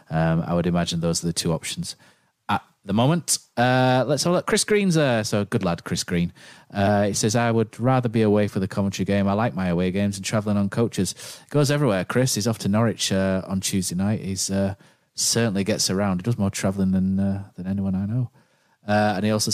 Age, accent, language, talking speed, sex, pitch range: 30-49, British, English, 235 wpm, male, 95-125 Hz